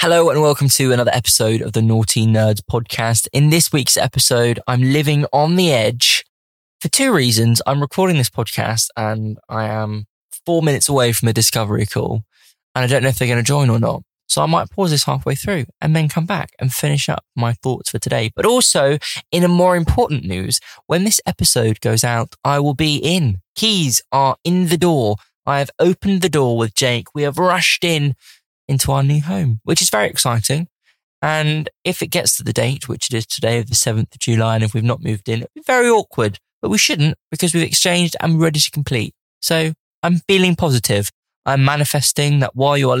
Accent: British